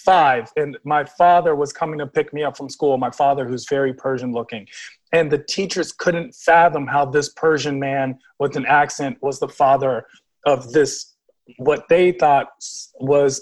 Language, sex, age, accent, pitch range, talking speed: English, male, 40-59, American, 140-175 Hz, 170 wpm